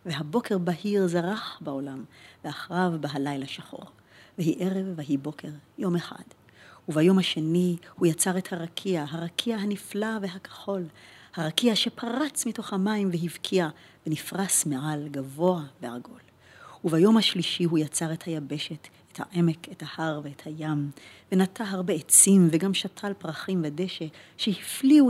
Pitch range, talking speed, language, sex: 155-195 Hz, 120 wpm, Hebrew, female